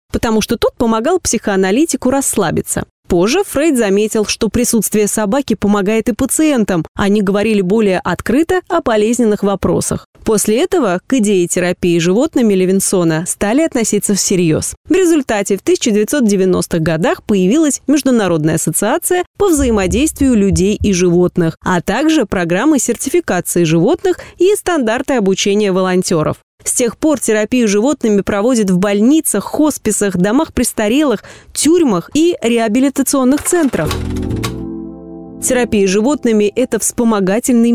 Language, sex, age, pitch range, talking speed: Russian, female, 20-39, 190-270 Hz, 120 wpm